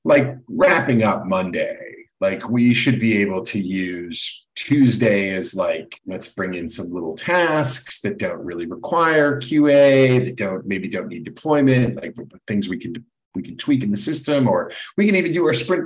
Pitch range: 110-135 Hz